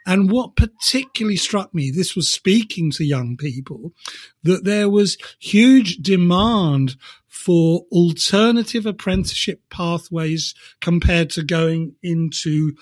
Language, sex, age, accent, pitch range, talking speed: English, male, 50-69, British, 160-205 Hz, 110 wpm